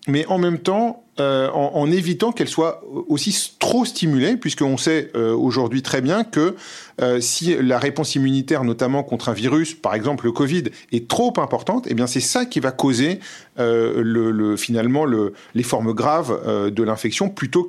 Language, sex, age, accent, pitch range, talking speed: French, male, 40-59, French, 120-155 Hz, 190 wpm